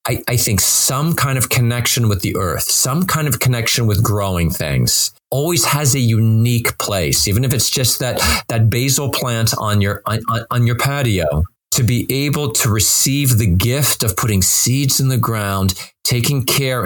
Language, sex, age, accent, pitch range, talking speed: English, male, 40-59, American, 110-140 Hz, 180 wpm